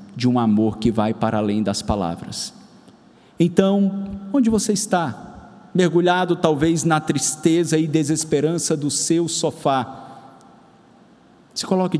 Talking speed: 120 wpm